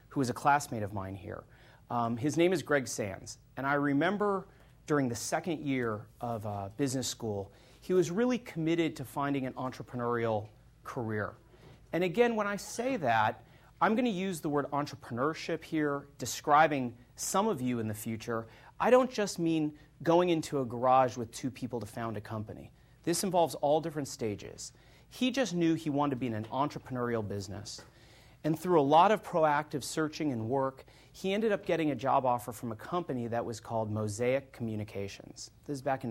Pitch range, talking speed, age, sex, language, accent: 115-155 Hz, 190 wpm, 30-49, male, English, American